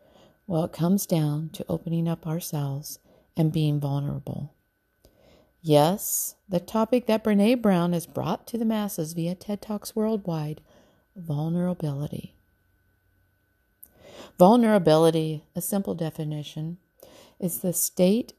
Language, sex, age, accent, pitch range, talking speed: English, female, 50-69, American, 160-200 Hz, 110 wpm